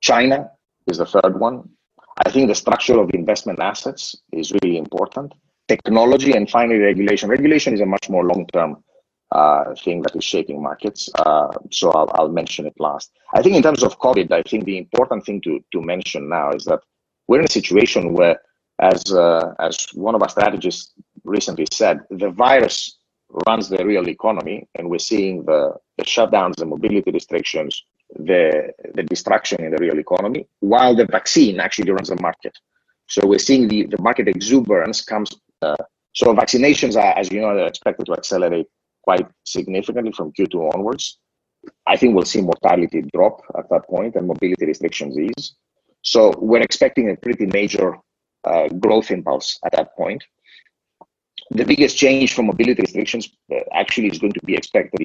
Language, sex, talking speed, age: English, male, 175 wpm, 30-49